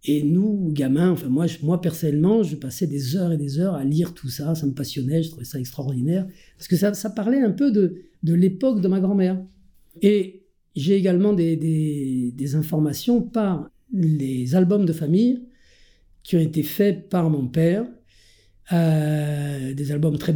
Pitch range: 155-195 Hz